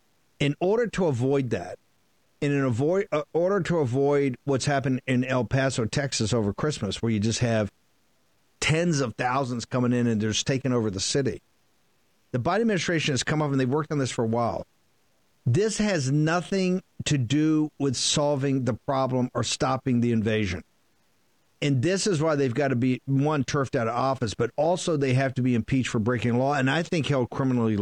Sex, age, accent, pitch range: male, 50-69, American, 125-150 Hz